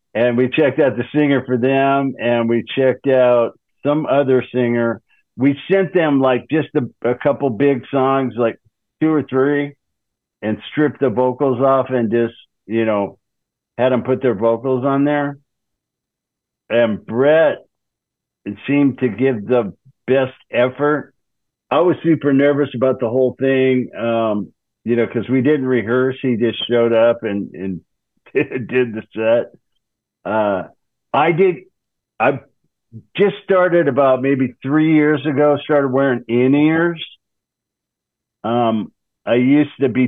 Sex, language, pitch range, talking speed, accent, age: male, English, 115-140 Hz, 145 wpm, American, 60-79